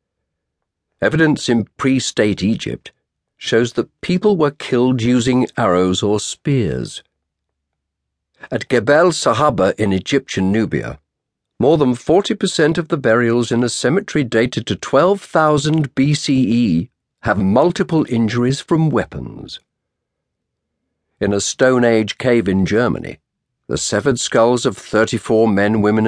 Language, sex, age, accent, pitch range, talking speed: English, male, 50-69, British, 95-130 Hz, 115 wpm